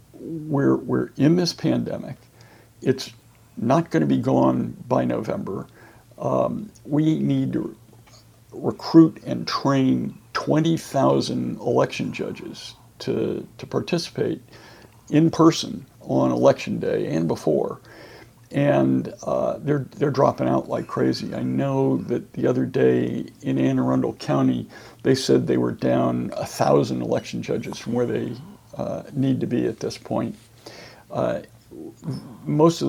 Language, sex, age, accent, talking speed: English, male, 60-79, American, 135 wpm